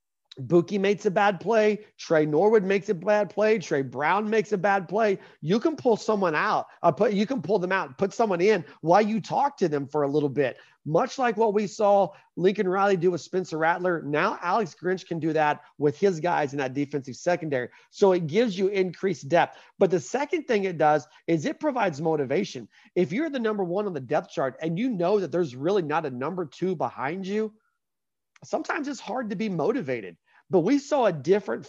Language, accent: English, American